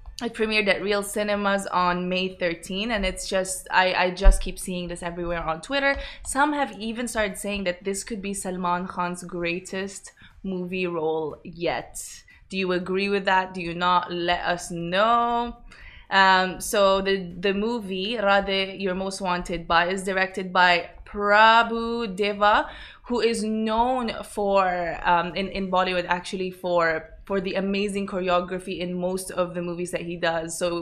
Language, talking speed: Arabic, 165 wpm